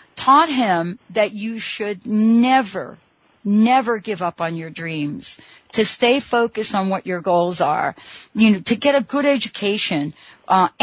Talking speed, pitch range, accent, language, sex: 155 wpm, 175-230 Hz, American, English, female